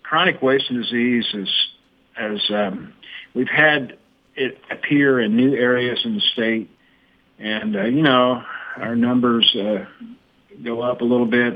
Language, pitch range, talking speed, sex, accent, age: English, 110-135 Hz, 145 wpm, male, American, 50-69